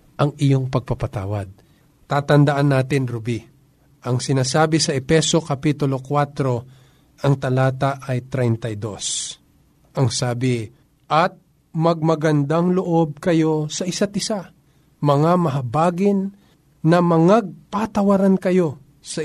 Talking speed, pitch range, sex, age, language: 95 wpm, 130-160 Hz, male, 50-69, Filipino